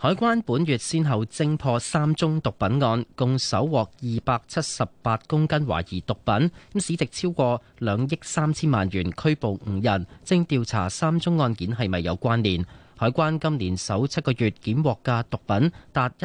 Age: 30-49